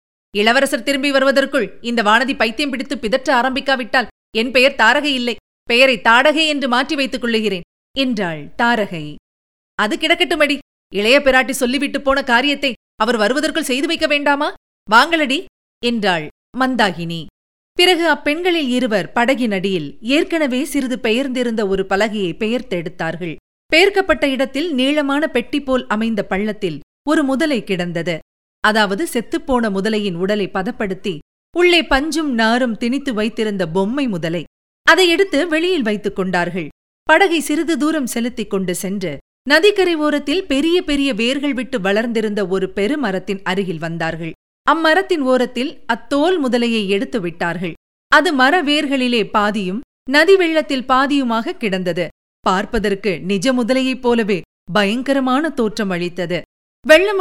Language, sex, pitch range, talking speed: Tamil, female, 205-290 Hz, 110 wpm